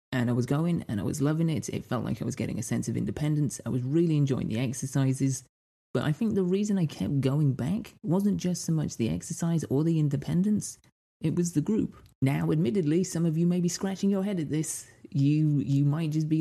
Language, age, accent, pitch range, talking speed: English, 30-49, British, 135-175 Hz, 235 wpm